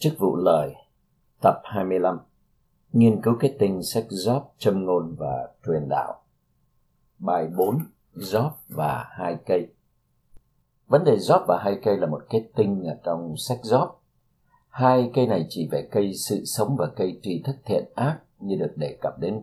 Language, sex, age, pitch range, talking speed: Vietnamese, male, 50-69, 90-125 Hz, 165 wpm